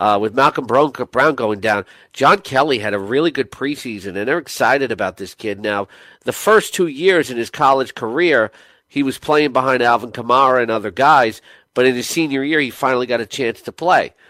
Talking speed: 205 wpm